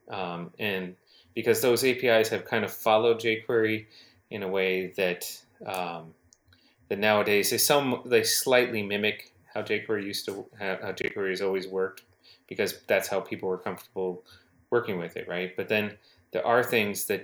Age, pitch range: 30-49, 95-110 Hz